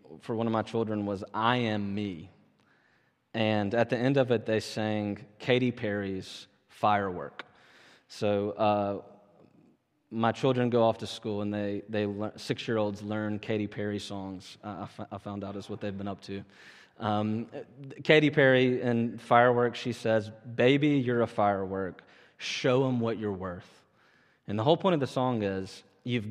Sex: male